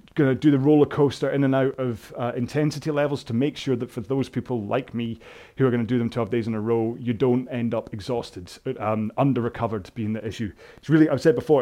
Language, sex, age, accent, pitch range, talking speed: English, male, 30-49, British, 115-135 Hz, 255 wpm